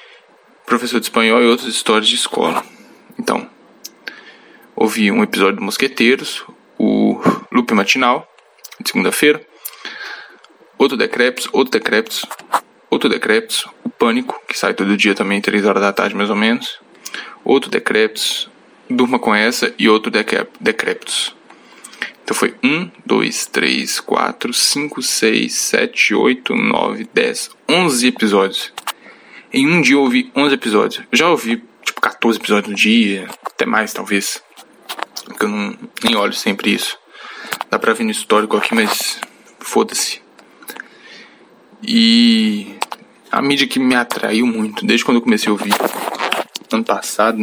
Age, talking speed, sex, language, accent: 10-29, 140 wpm, male, Portuguese, Brazilian